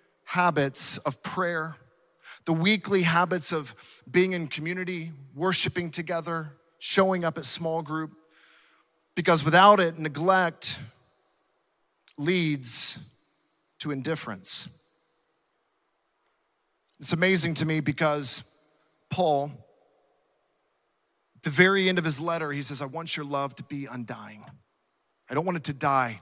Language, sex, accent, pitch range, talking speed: English, male, American, 155-185 Hz, 120 wpm